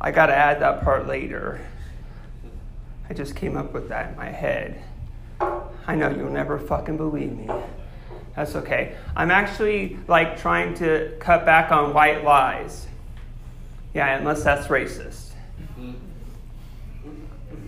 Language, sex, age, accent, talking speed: English, male, 30-49, American, 130 wpm